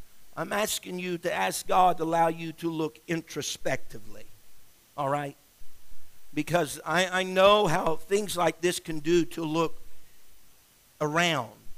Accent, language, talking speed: American, English, 140 wpm